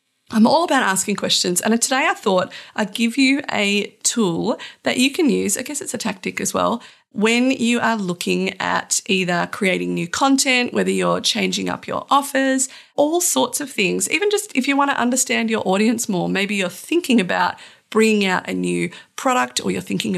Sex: female